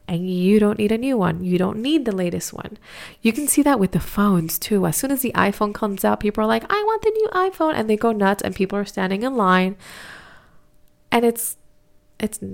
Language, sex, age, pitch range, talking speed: English, female, 20-39, 185-235 Hz, 235 wpm